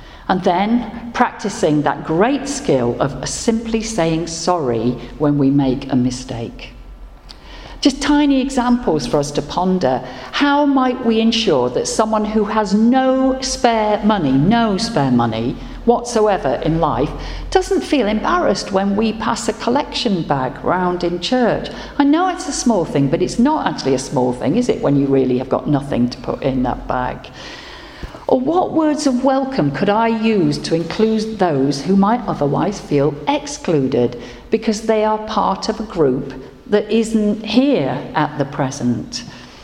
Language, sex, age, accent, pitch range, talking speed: English, female, 50-69, British, 140-235 Hz, 160 wpm